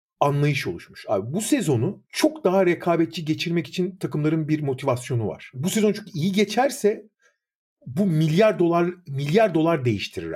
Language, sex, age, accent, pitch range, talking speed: Turkish, male, 50-69, native, 135-200 Hz, 145 wpm